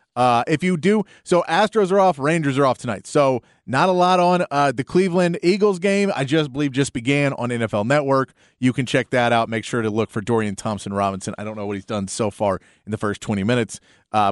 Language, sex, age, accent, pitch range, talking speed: English, male, 30-49, American, 115-160 Hz, 240 wpm